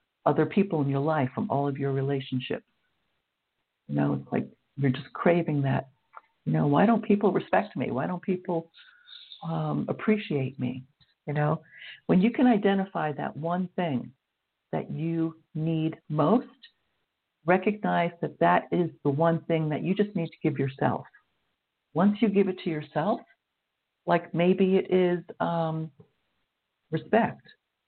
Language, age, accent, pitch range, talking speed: English, 60-79, American, 150-200 Hz, 150 wpm